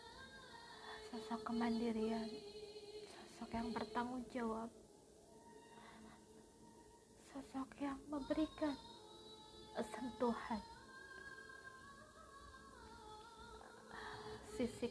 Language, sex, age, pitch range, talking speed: Indonesian, female, 20-39, 220-295 Hz, 45 wpm